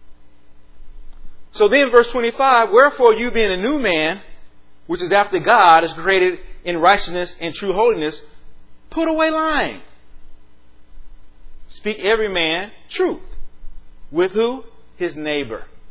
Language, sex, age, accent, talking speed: English, male, 40-59, American, 120 wpm